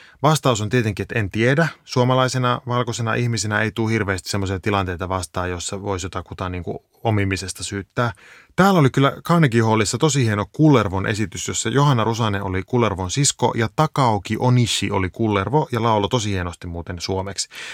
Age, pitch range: 30-49, 100-130 Hz